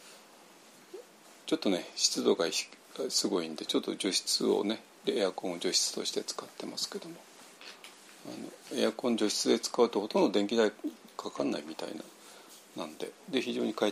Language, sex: Japanese, male